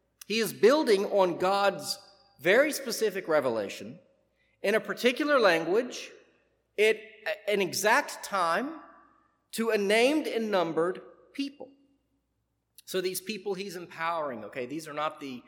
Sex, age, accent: male, 40-59, American